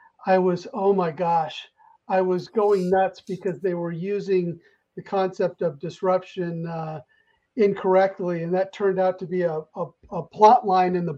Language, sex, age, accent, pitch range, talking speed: English, male, 40-59, American, 175-205 Hz, 170 wpm